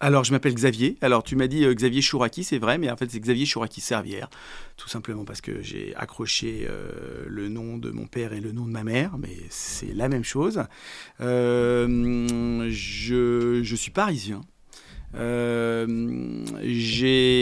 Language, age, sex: French, 40-59, male